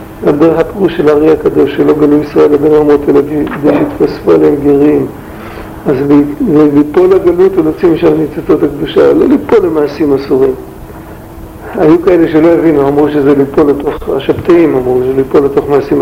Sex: male